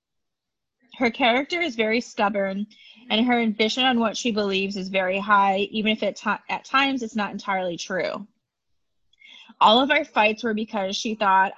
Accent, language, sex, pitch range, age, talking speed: American, English, female, 195-225 Hz, 20-39, 165 wpm